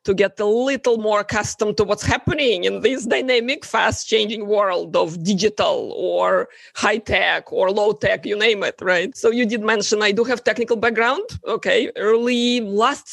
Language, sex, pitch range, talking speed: English, female, 195-245 Hz, 165 wpm